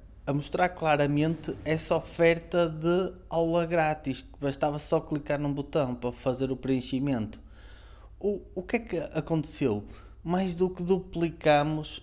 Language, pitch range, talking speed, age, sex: Portuguese, 120-165 Hz, 135 wpm, 20-39, male